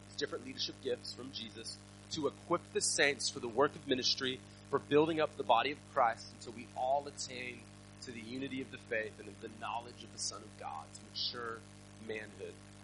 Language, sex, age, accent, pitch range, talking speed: English, male, 30-49, American, 100-130 Hz, 200 wpm